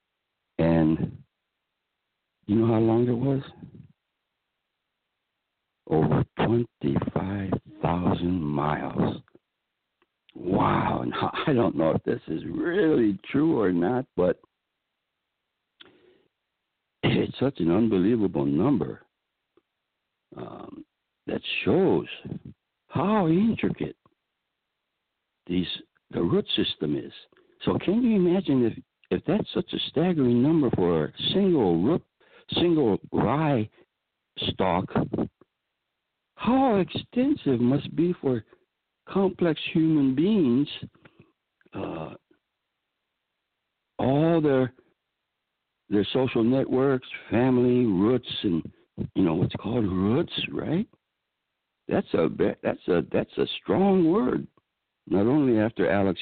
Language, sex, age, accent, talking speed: English, male, 60-79, American, 95 wpm